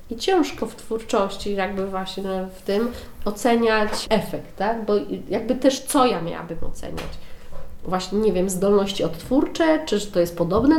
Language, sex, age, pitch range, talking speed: Polish, female, 30-49, 180-220 Hz, 150 wpm